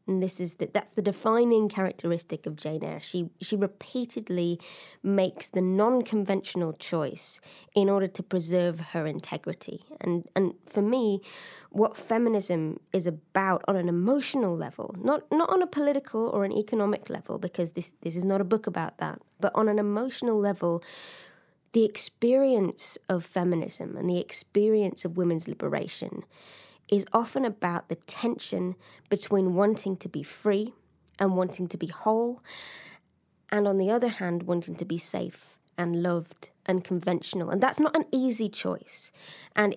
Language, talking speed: English, 155 wpm